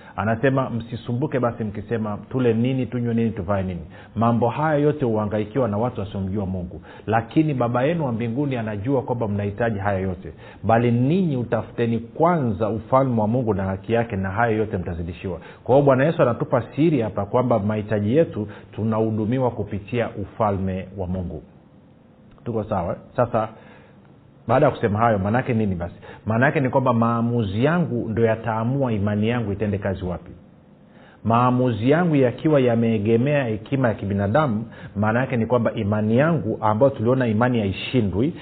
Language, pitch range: Swahili, 105-125 Hz